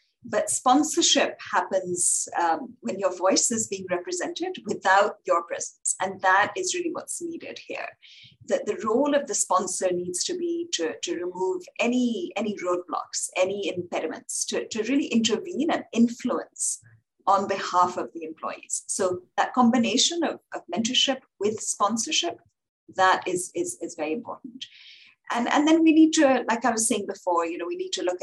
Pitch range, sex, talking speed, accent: 180-275 Hz, female, 170 wpm, Indian